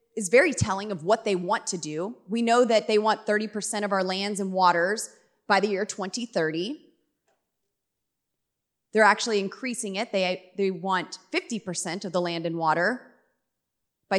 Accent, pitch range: American, 195-260 Hz